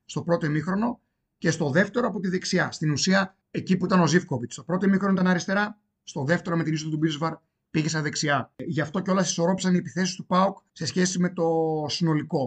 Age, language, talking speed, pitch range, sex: 30-49, Greek, 215 wpm, 150-180 Hz, male